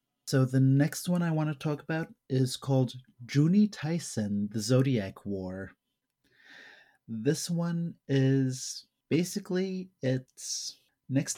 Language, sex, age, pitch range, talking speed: English, male, 30-49, 120-140 Hz, 115 wpm